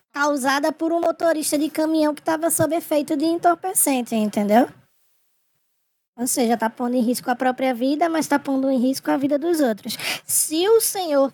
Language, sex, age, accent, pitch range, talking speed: Portuguese, male, 10-29, Brazilian, 250-330 Hz, 180 wpm